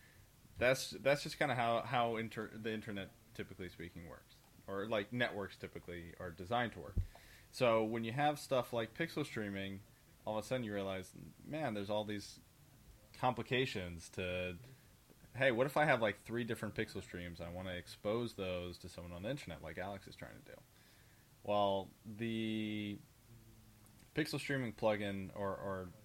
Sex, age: male, 20-39